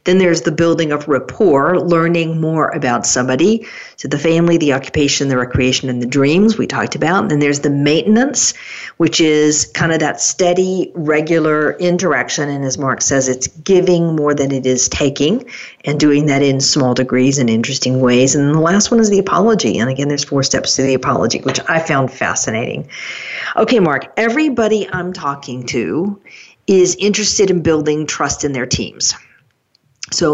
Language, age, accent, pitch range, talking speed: English, 50-69, American, 135-180 Hz, 175 wpm